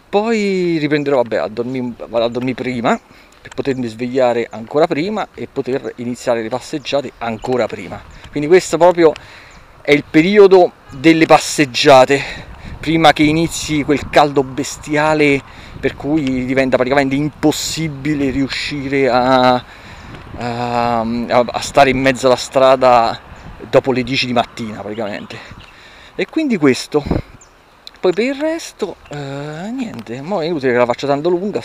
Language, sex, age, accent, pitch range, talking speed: Italian, male, 40-59, native, 125-155 Hz, 135 wpm